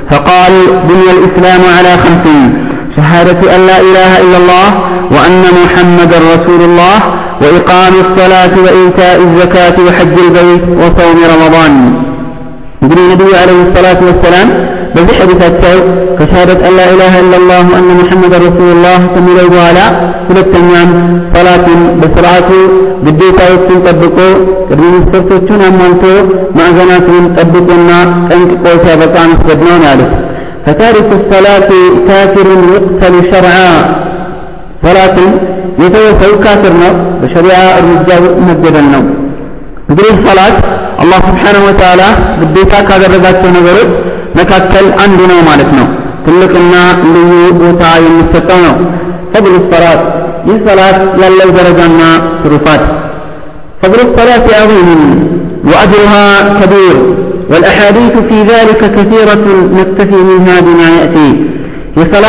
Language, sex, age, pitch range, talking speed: Amharic, male, 50-69, 175-190 Hz, 100 wpm